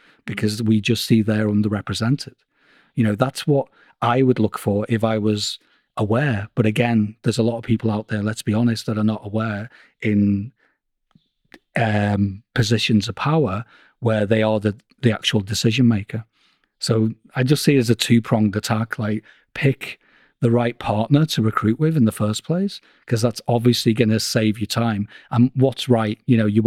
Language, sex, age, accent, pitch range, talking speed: English, male, 40-59, British, 110-130 Hz, 185 wpm